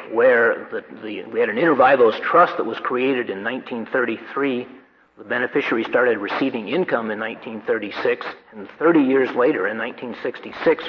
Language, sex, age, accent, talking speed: English, male, 50-69, American, 145 wpm